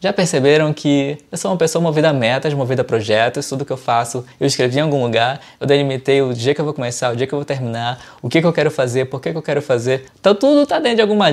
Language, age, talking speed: Portuguese, 20-39, 285 wpm